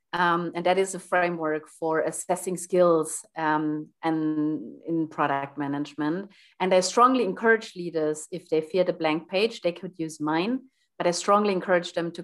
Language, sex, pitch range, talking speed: English, female, 155-190 Hz, 170 wpm